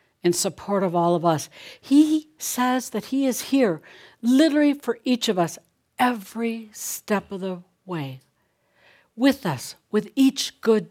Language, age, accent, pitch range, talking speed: English, 60-79, American, 165-245 Hz, 150 wpm